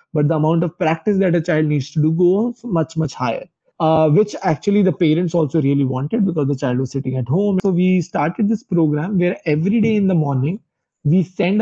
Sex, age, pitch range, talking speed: male, 20-39, 155-190 Hz, 220 wpm